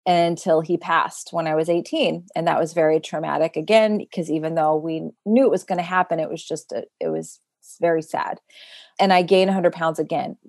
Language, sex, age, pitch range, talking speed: English, female, 30-49, 165-195 Hz, 205 wpm